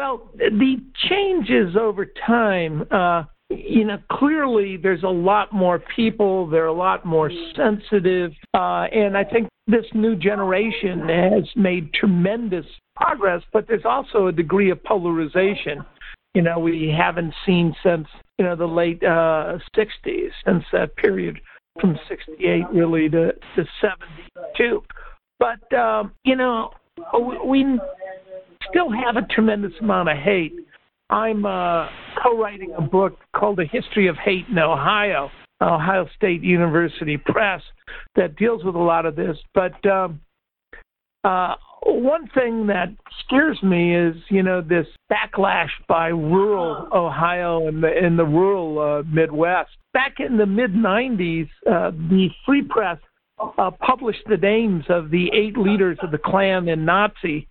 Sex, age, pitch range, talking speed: male, 60-79, 170-220 Hz, 140 wpm